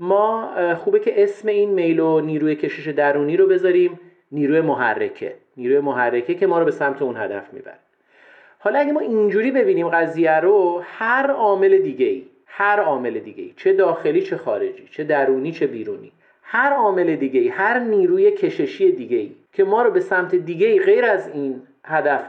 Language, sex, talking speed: Persian, male, 165 wpm